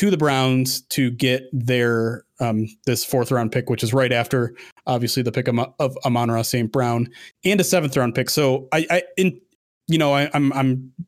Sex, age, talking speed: male, 30-49, 190 wpm